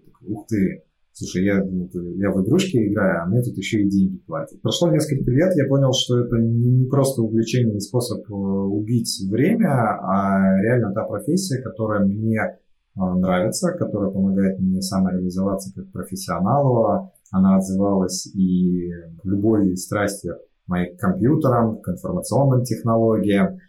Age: 30-49